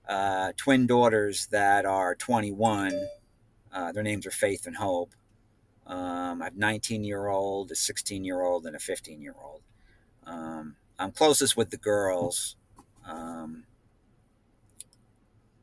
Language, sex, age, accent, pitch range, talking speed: English, male, 50-69, American, 100-120 Hz, 135 wpm